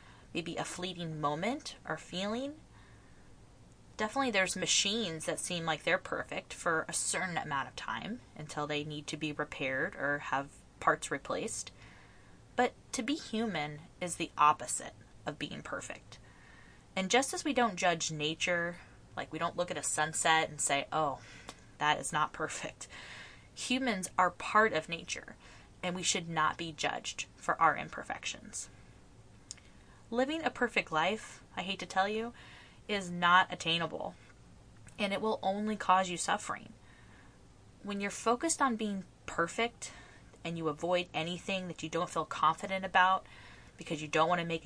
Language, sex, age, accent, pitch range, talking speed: English, female, 20-39, American, 155-210 Hz, 155 wpm